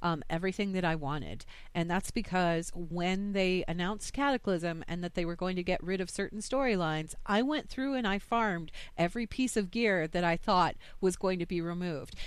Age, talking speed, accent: 40-59, 200 wpm, American